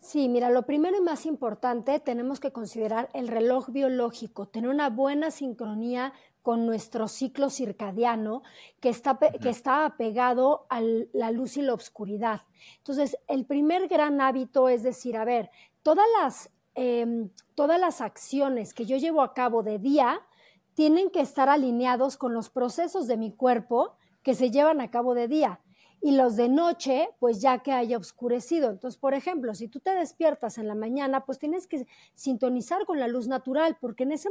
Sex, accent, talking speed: female, Mexican, 175 wpm